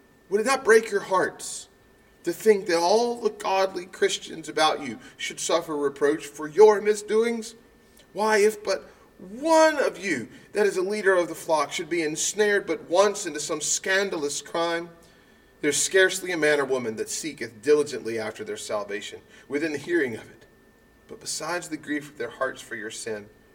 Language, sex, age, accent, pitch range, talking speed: English, male, 40-59, American, 150-220 Hz, 180 wpm